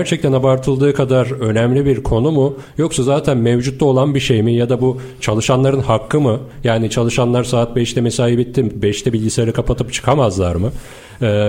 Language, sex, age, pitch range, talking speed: Turkish, male, 40-59, 115-135 Hz, 165 wpm